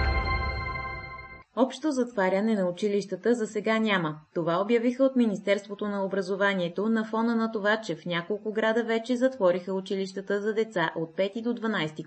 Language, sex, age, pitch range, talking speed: Bulgarian, female, 20-39, 170-220 Hz, 150 wpm